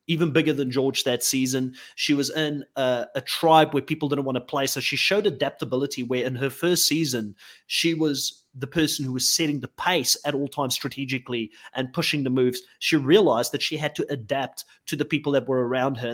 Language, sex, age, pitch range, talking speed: English, male, 30-49, 130-150 Hz, 215 wpm